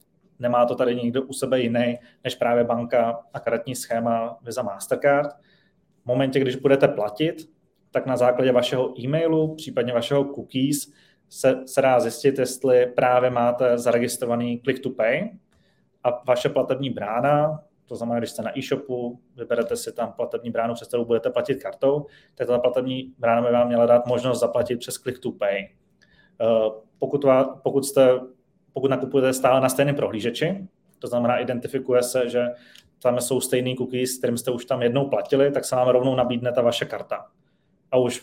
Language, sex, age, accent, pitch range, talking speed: Czech, male, 20-39, native, 120-135 Hz, 160 wpm